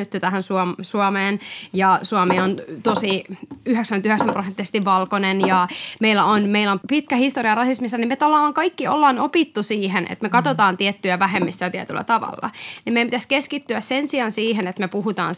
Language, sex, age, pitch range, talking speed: Finnish, female, 20-39, 200-265 Hz, 160 wpm